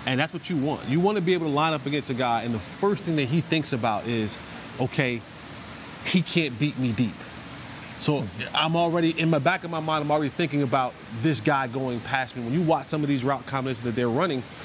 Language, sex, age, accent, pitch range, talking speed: English, male, 30-49, American, 130-160 Hz, 245 wpm